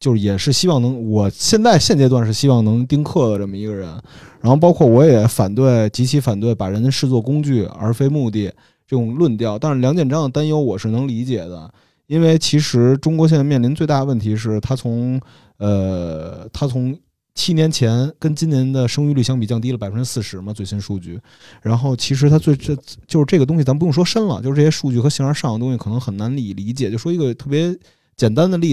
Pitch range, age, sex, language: 110-150 Hz, 20-39, male, Chinese